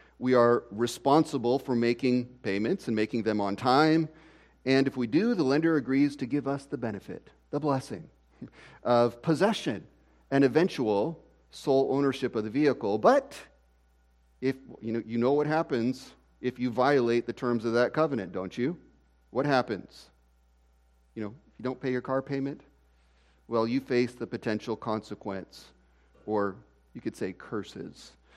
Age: 40-59